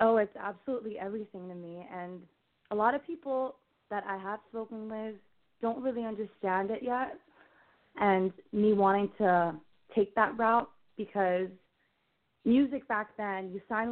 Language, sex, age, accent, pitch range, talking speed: English, female, 20-39, American, 185-220 Hz, 145 wpm